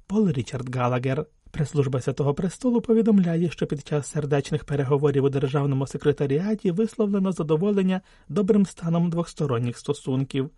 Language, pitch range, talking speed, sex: Ukrainian, 135-195 Hz, 120 wpm, male